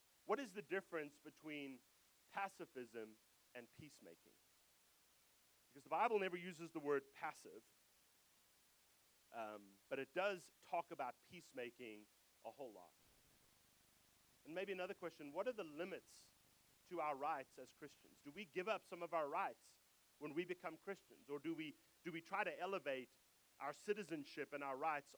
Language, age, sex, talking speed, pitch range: English, 40-59, male, 155 wpm, 135-185 Hz